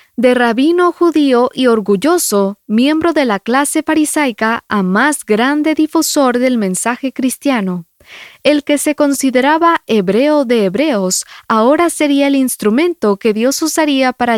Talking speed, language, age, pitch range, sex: 135 wpm, English, 20-39, 220-295 Hz, female